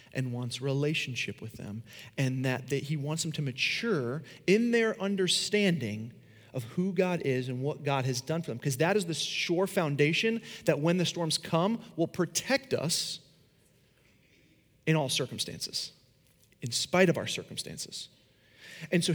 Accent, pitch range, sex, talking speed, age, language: American, 140-180 Hz, male, 155 wpm, 30-49, English